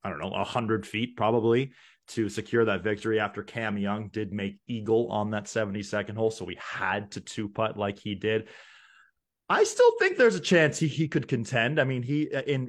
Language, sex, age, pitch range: English, male, 20-39, 100-120 Hz